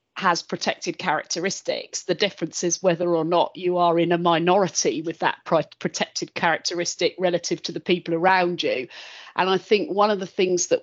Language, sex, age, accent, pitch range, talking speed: English, female, 40-59, British, 170-200 Hz, 175 wpm